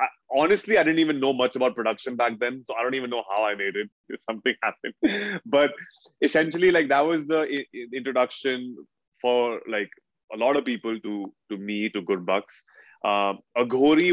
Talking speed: 185 wpm